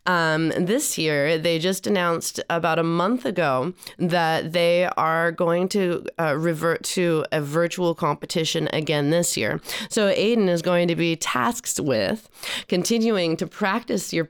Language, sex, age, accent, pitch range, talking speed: English, female, 30-49, American, 165-205 Hz, 150 wpm